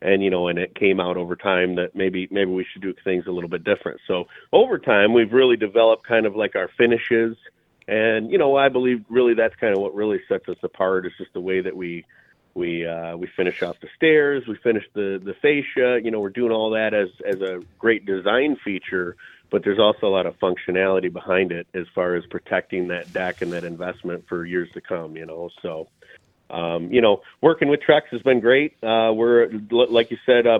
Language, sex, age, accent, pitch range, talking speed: English, male, 40-59, American, 90-120 Hz, 225 wpm